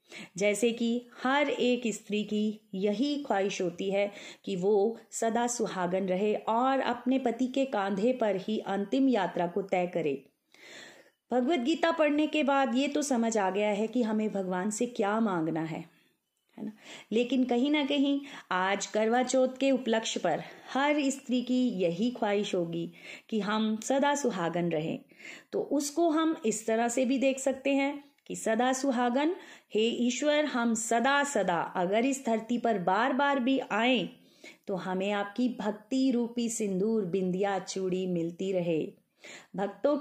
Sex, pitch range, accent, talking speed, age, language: female, 200-265 Hz, native, 155 wpm, 30-49, Hindi